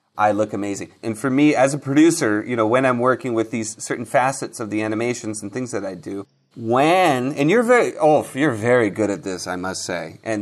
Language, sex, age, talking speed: English, male, 30-49, 230 wpm